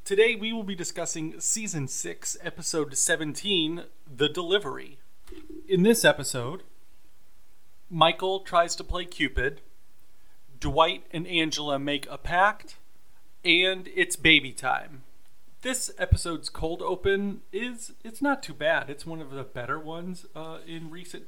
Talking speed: 135 wpm